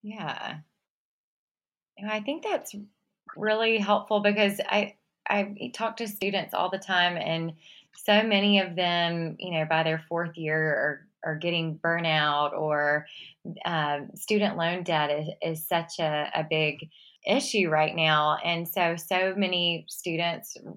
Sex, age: female, 20-39